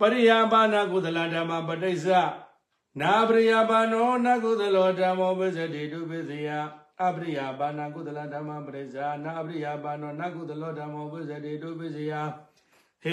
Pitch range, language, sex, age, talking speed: 150-185 Hz, English, male, 60-79, 80 wpm